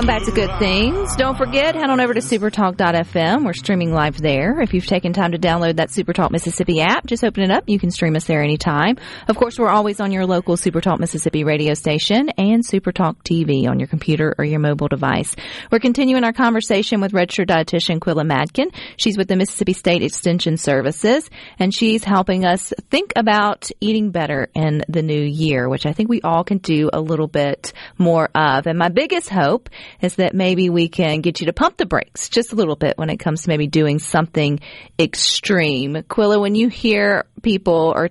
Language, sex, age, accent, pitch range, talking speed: English, female, 40-59, American, 160-215 Hz, 205 wpm